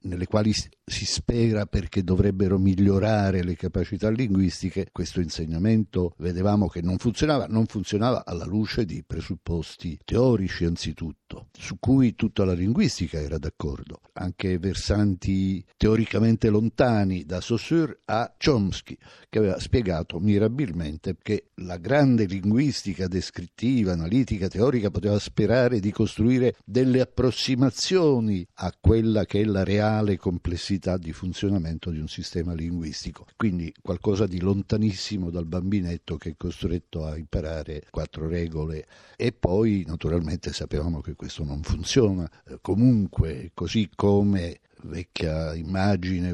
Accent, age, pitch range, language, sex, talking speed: native, 60-79, 85-105 Hz, Italian, male, 125 wpm